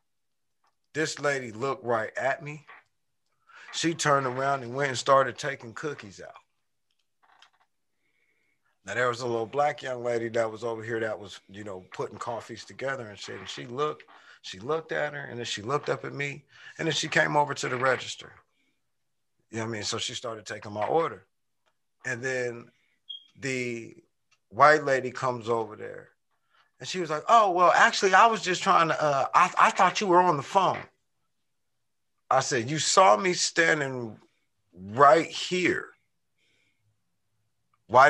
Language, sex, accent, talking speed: English, male, American, 170 wpm